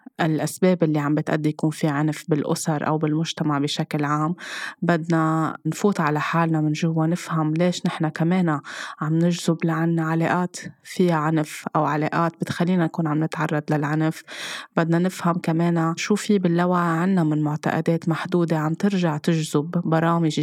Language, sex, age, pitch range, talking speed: Arabic, female, 20-39, 155-170 Hz, 145 wpm